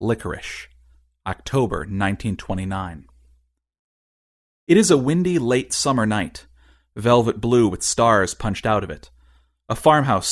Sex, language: male, English